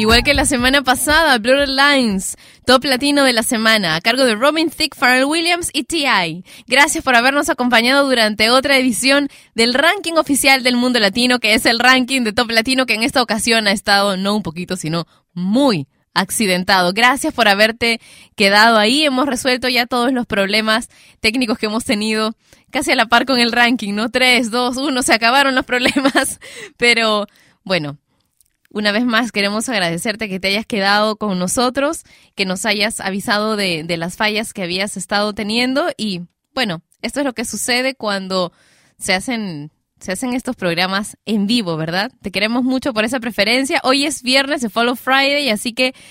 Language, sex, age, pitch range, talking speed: Spanish, female, 20-39, 205-260 Hz, 180 wpm